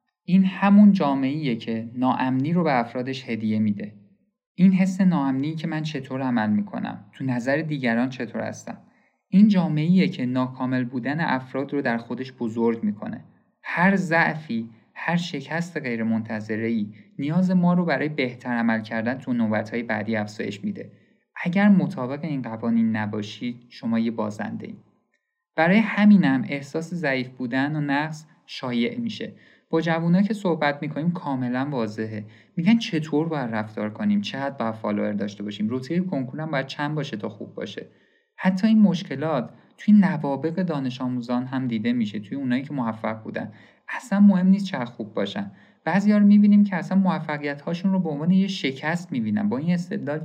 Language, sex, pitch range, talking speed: Persian, male, 120-190 Hz, 150 wpm